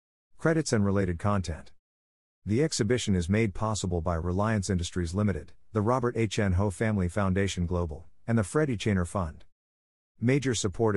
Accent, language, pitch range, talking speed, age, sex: American, English, 90-110 Hz, 155 wpm, 50-69, male